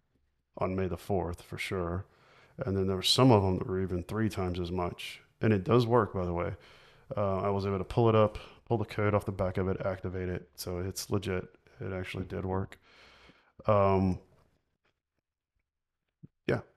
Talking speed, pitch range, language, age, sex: 195 wpm, 95-115 Hz, English, 30-49, male